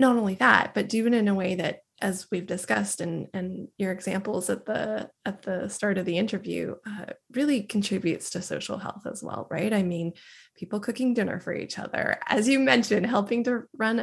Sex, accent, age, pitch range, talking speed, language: female, American, 20-39, 185-225 Hz, 200 wpm, English